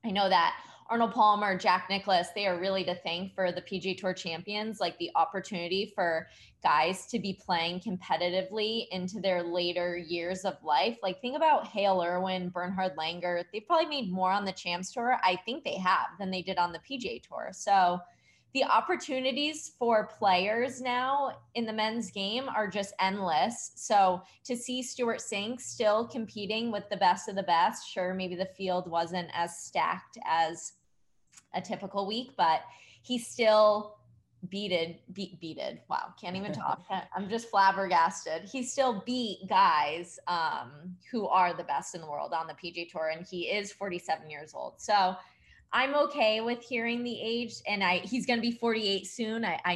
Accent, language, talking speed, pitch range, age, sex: American, English, 175 wpm, 180-230 Hz, 20-39, female